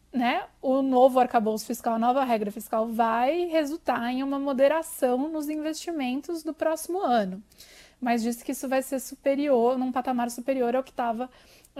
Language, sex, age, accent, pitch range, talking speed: Portuguese, female, 20-39, Brazilian, 235-280 Hz, 165 wpm